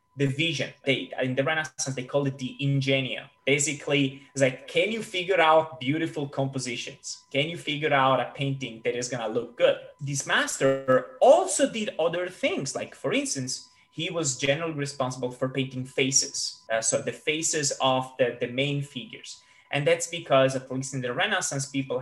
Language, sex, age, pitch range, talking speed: English, male, 20-39, 130-155 Hz, 180 wpm